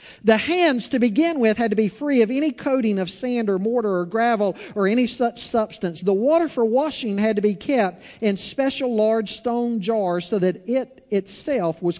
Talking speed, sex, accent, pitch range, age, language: 200 wpm, male, American, 195-245 Hz, 50-69, English